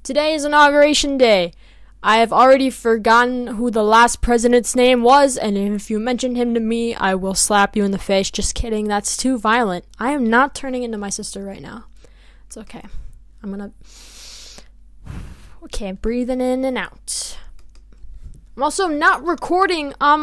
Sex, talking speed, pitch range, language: female, 170 wpm, 205-280 Hz, English